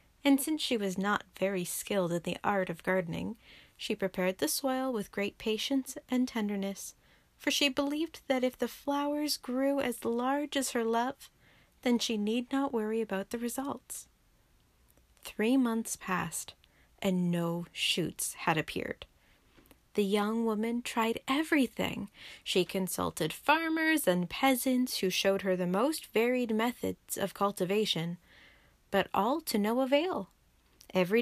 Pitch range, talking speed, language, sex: 195-265 Hz, 145 wpm, English, female